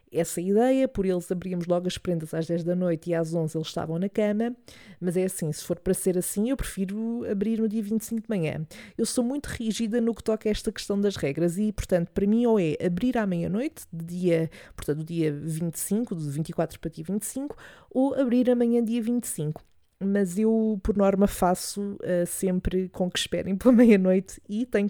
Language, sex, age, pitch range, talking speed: Portuguese, female, 20-39, 175-225 Hz, 205 wpm